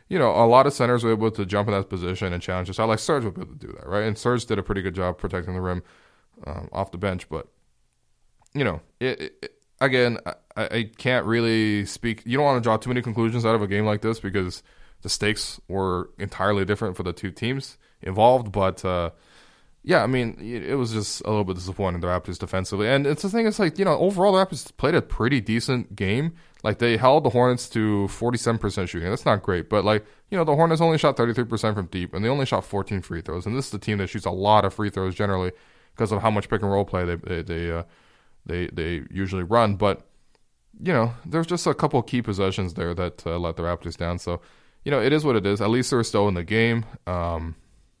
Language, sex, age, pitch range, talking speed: English, male, 20-39, 90-120 Hz, 245 wpm